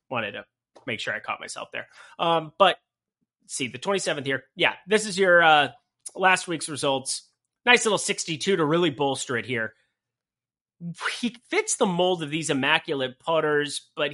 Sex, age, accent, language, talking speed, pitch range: male, 30-49, American, English, 165 wpm, 130-185 Hz